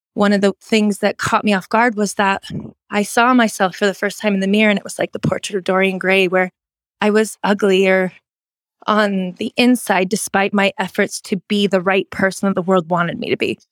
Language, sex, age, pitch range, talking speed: English, female, 20-39, 200-235 Hz, 230 wpm